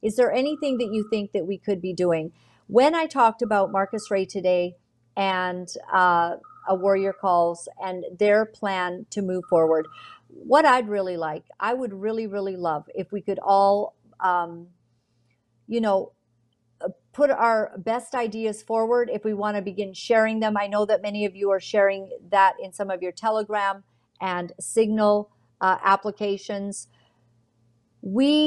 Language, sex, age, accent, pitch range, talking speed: English, female, 50-69, American, 180-225 Hz, 160 wpm